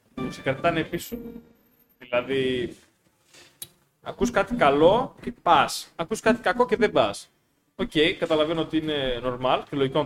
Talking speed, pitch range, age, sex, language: 145 wpm, 135-175 Hz, 20-39, male, Greek